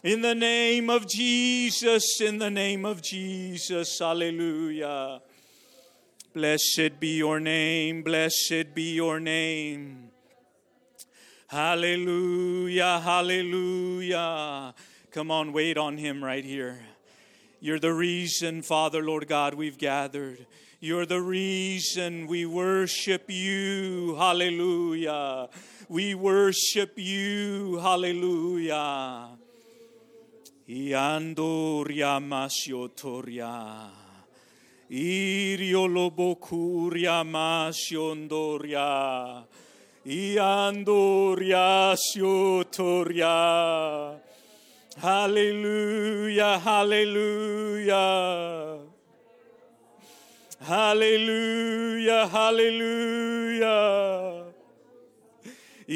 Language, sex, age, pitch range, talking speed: English, male, 40-59, 155-210 Hz, 65 wpm